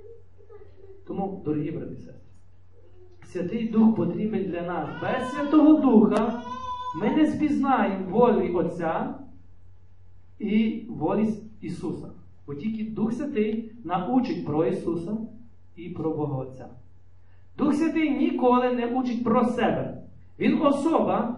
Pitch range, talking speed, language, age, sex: 160-255 Hz, 110 wpm, Ukrainian, 40-59, male